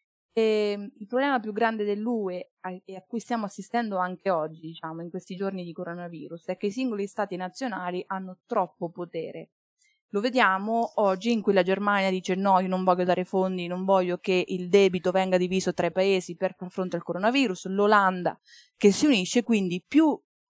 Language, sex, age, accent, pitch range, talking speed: Italian, female, 20-39, native, 180-220 Hz, 180 wpm